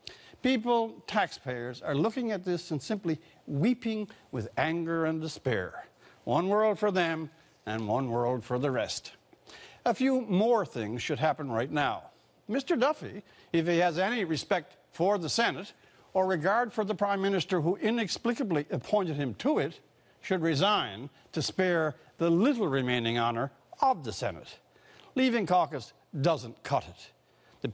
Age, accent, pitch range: 60-79, American, 135-205 Hz